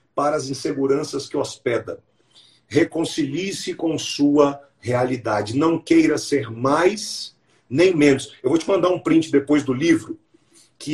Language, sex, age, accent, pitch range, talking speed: English, male, 40-59, Brazilian, 140-215 Hz, 135 wpm